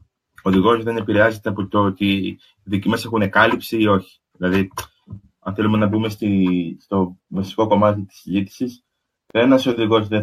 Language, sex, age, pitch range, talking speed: Greek, male, 20-39, 95-115 Hz, 155 wpm